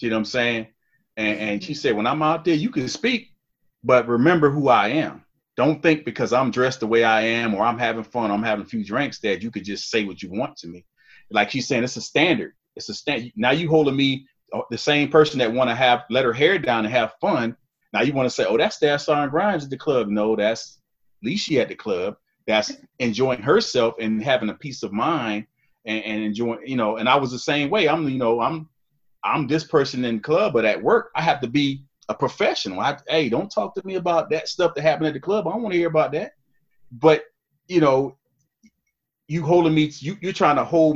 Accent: American